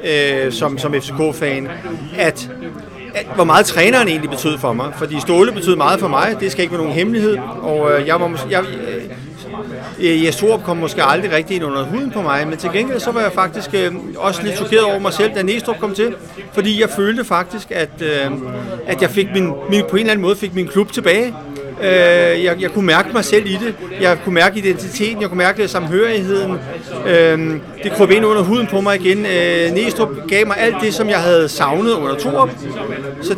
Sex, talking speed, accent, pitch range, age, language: male, 210 wpm, native, 150-200 Hz, 40-59, Danish